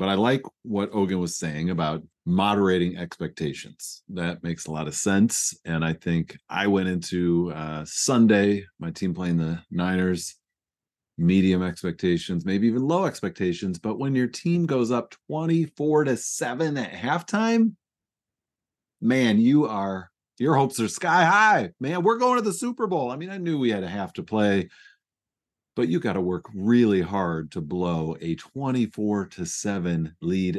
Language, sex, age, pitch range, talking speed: English, male, 40-59, 90-135 Hz, 165 wpm